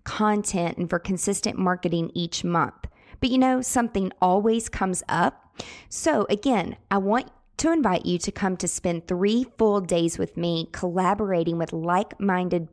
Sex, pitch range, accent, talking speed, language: female, 170-205 Hz, American, 155 wpm, English